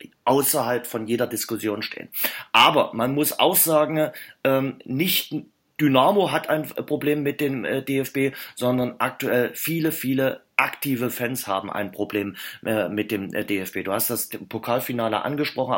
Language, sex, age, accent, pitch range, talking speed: German, male, 30-49, German, 115-140 Hz, 135 wpm